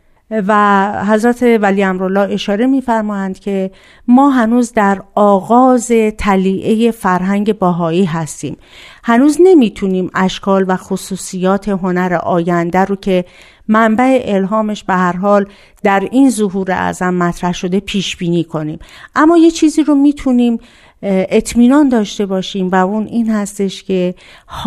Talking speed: 125 wpm